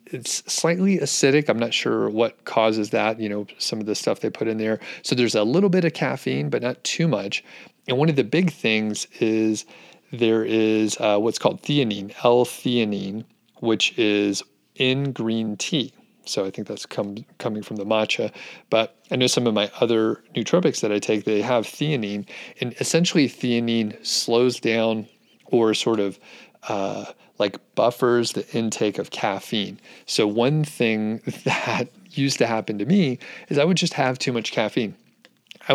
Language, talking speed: English, 175 wpm